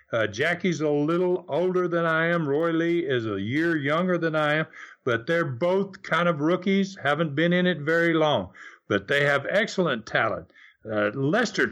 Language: English